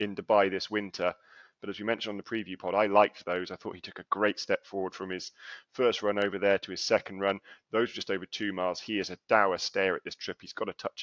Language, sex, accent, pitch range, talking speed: English, male, British, 100-115 Hz, 270 wpm